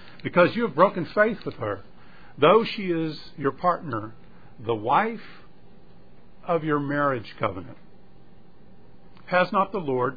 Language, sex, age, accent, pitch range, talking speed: English, male, 50-69, American, 120-180 Hz, 130 wpm